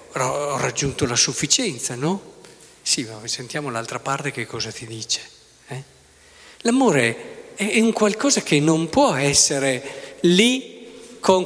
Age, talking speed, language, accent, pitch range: 50-69, 130 wpm, Italian, native, 155-235 Hz